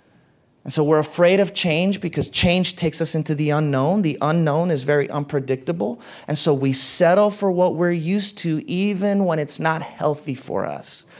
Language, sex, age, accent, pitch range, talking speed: English, male, 30-49, American, 150-195 Hz, 180 wpm